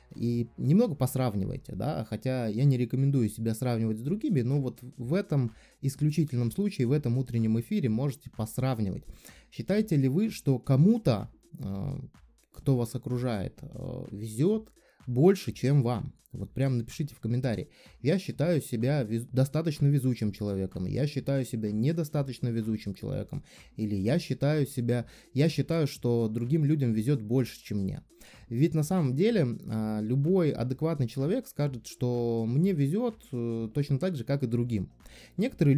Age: 20-39